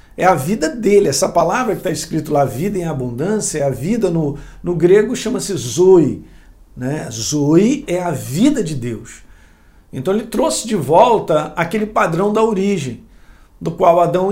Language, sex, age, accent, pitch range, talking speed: Portuguese, male, 50-69, Brazilian, 145-195 Hz, 170 wpm